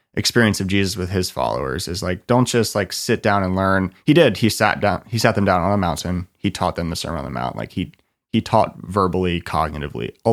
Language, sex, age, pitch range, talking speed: English, male, 30-49, 90-110 Hz, 245 wpm